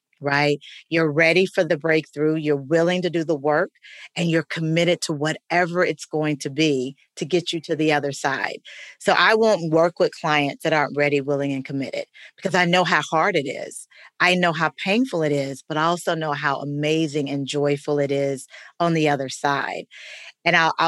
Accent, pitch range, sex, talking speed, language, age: American, 155-180 Hz, female, 200 wpm, English, 40-59